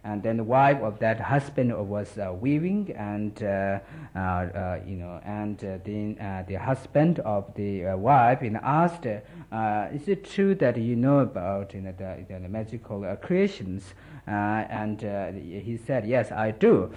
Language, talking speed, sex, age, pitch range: Italian, 180 wpm, male, 60-79, 105-140 Hz